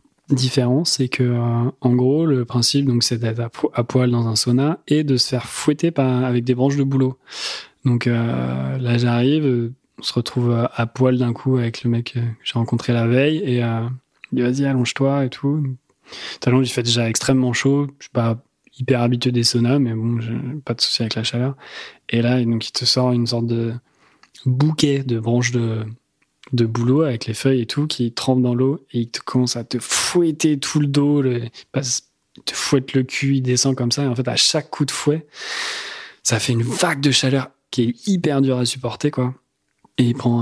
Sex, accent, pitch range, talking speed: male, French, 120-135 Hz, 215 wpm